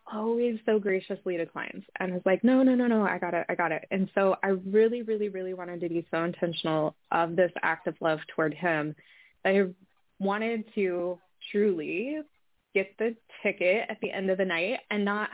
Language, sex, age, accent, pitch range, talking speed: English, female, 20-39, American, 175-220 Hz, 195 wpm